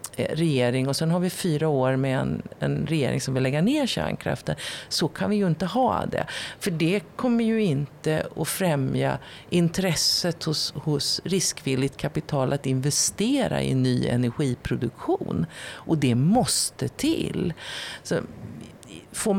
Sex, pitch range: female, 130-185 Hz